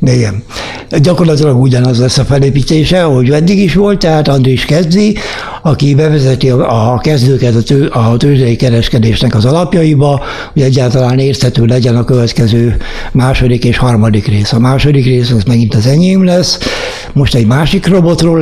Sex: male